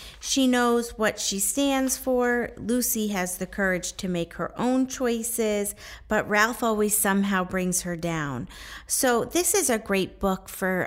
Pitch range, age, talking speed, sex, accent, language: 170-225 Hz, 40-59, 160 wpm, female, American, English